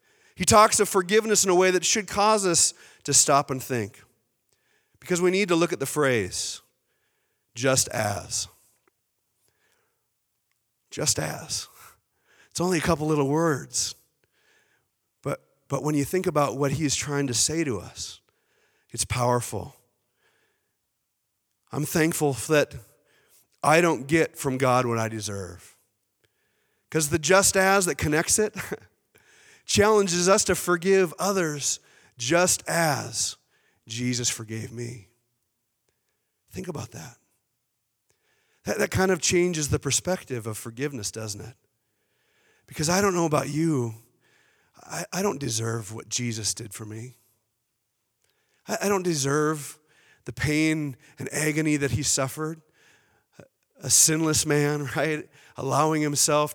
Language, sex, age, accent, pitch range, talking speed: English, male, 40-59, American, 120-170 Hz, 130 wpm